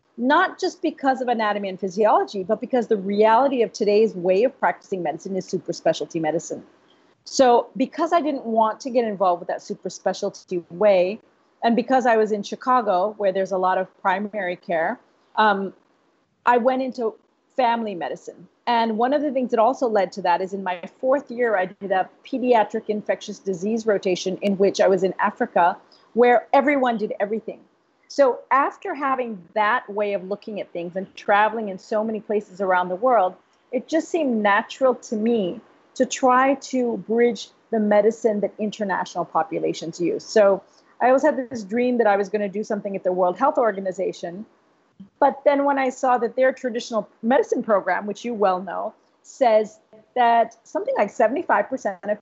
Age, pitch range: 40-59, 195-255 Hz